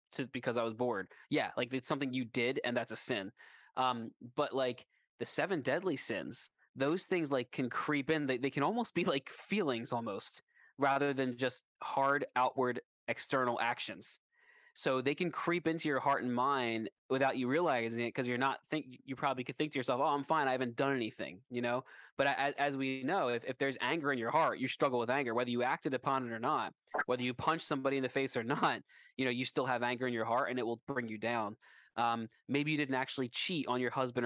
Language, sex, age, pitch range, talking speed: English, male, 20-39, 120-135 Hz, 230 wpm